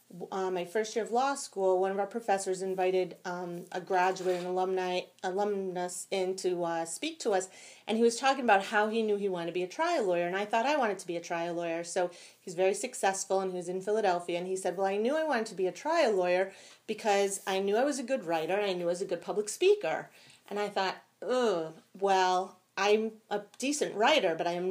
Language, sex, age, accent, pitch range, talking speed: English, female, 30-49, American, 185-235 Hz, 240 wpm